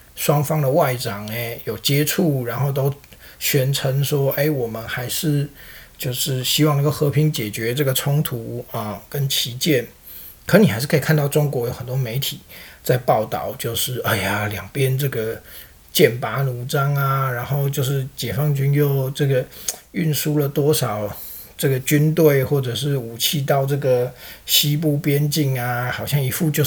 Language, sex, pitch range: Chinese, male, 120-145 Hz